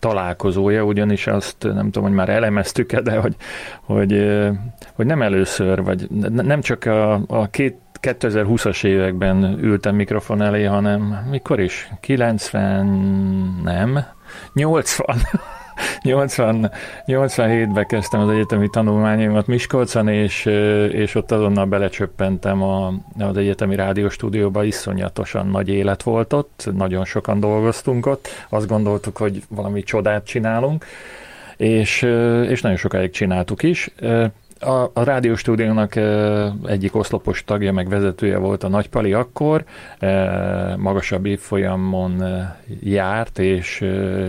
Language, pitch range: Hungarian, 95-115 Hz